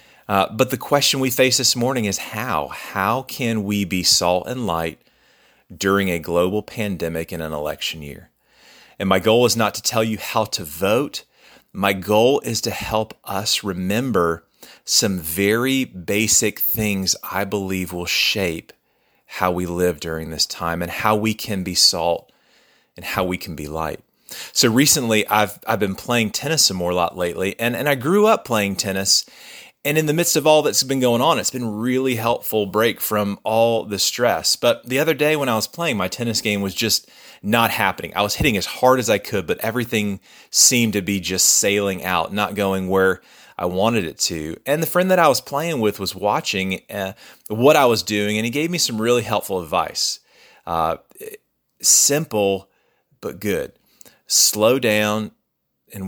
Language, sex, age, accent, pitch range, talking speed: English, male, 40-59, American, 95-120 Hz, 185 wpm